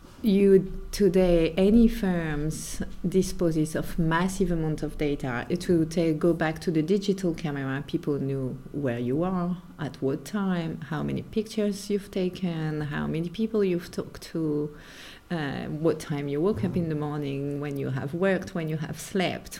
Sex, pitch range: female, 155-190 Hz